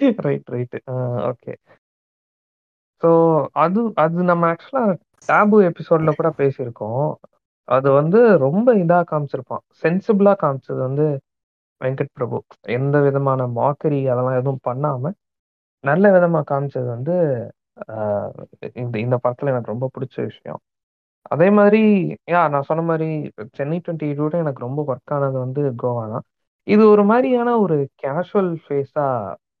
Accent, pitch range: native, 130-175 Hz